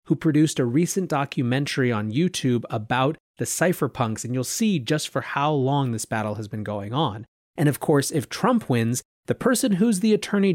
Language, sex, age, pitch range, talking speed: English, male, 30-49, 120-175 Hz, 195 wpm